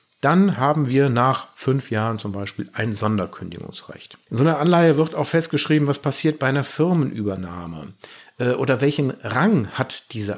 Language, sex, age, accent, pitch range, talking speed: German, male, 50-69, German, 100-145 Hz, 155 wpm